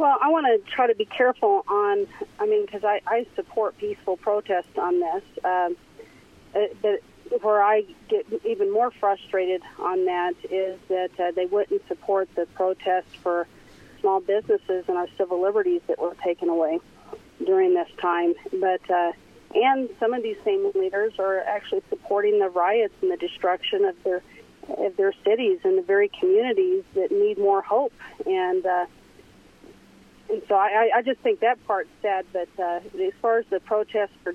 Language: English